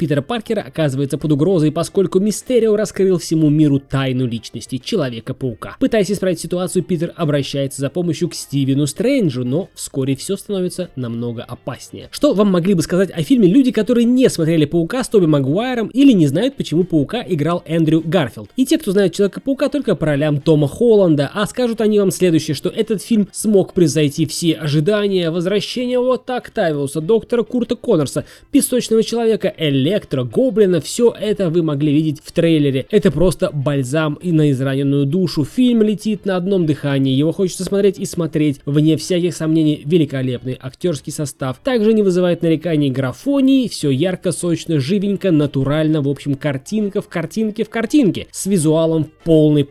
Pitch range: 150-210 Hz